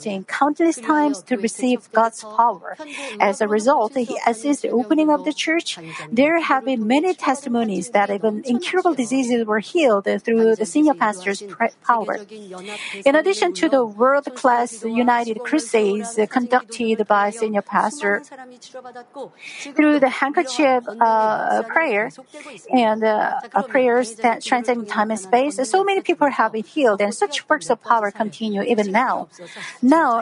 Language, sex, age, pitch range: Korean, female, 50-69, 215-275 Hz